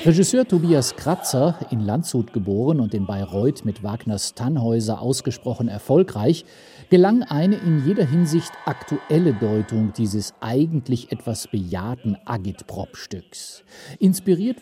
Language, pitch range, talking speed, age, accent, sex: German, 110-150 Hz, 110 wpm, 50-69, German, male